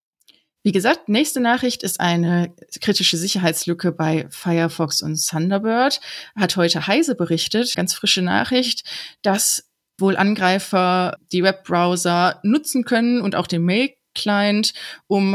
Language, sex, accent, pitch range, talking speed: German, female, German, 170-205 Hz, 120 wpm